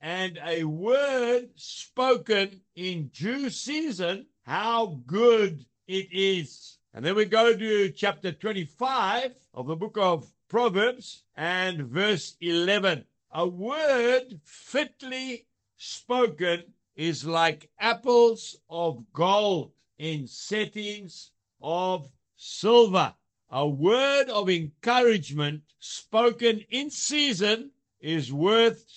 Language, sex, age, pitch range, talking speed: English, male, 60-79, 165-235 Hz, 100 wpm